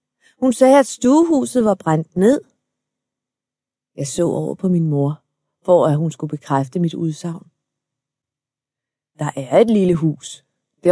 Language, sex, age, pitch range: Danish, female, 30-49, 150-195 Hz